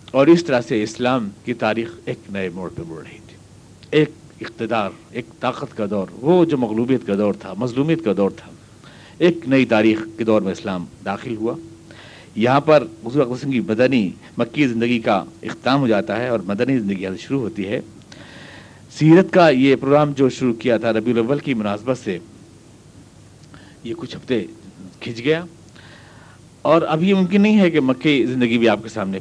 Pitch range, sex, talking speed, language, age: 105-145 Hz, male, 180 wpm, Urdu, 60-79